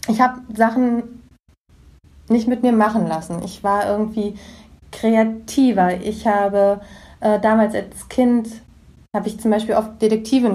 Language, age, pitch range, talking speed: German, 20-39, 195-225 Hz, 135 wpm